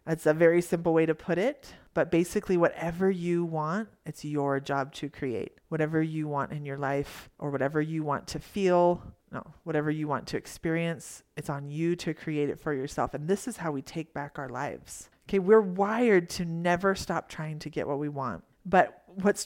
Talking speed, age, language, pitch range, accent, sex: 205 wpm, 30-49, English, 155-195 Hz, American, female